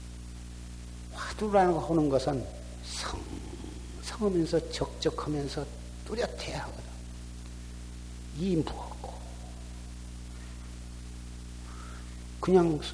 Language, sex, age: Korean, male, 60-79